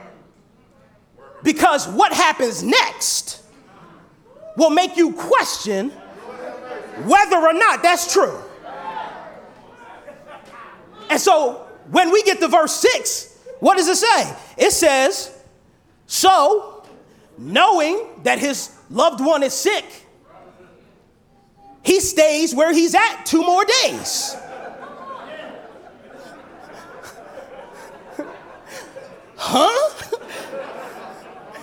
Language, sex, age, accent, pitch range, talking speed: English, male, 30-49, American, 275-410 Hz, 85 wpm